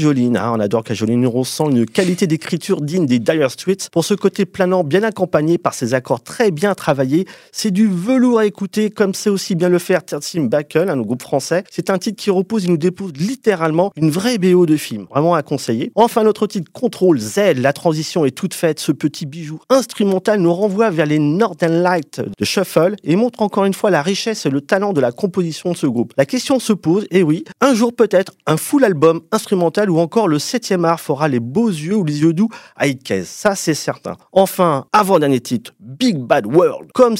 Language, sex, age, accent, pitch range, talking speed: French, male, 30-49, French, 145-195 Hz, 220 wpm